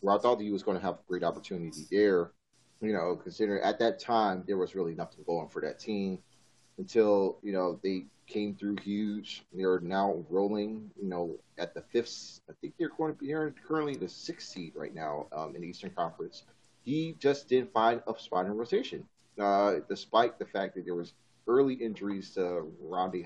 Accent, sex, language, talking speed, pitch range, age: American, male, English, 205 wpm, 90-110 Hz, 30-49